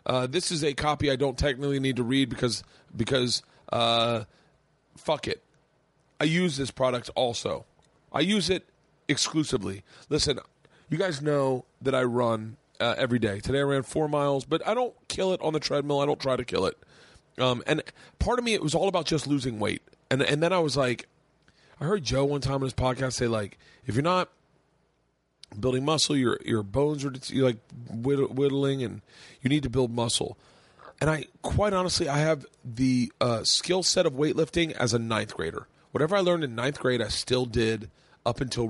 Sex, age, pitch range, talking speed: male, 30-49, 120-150 Hz, 200 wpm